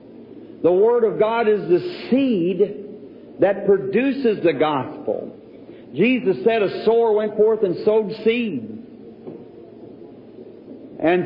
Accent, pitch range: American, 180-215 Hz